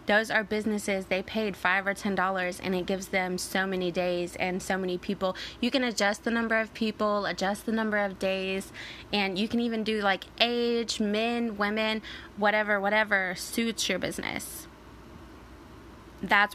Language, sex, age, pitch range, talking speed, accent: English, female, 20-39, 190-220 Hz, 165 wpm, American